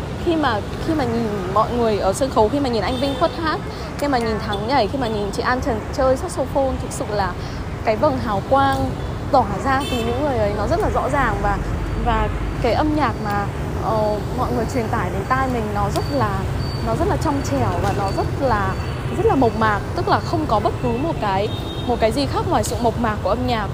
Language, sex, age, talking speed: Vietnamese, female, 10-29, 245 wpm